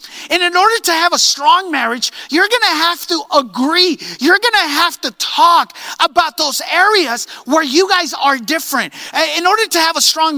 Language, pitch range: English, 240-340 Hz